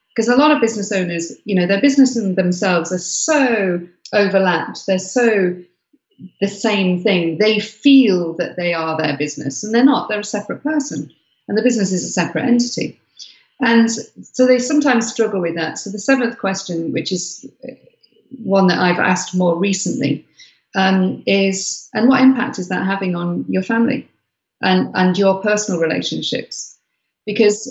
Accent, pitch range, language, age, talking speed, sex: British, 175-215 Hz, English, 50-69, 165 wpm, female